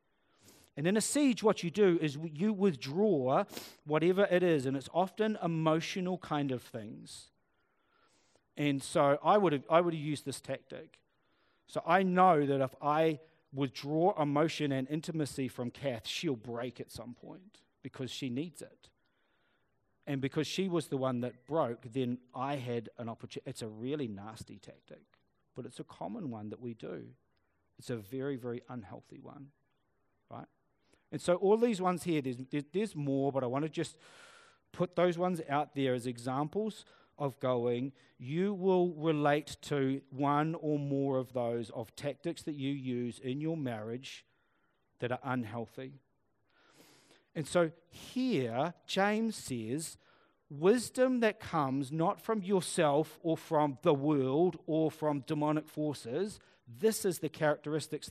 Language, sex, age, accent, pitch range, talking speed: English, male, 40-59, Australian, 130-170 Hz, 155 wpm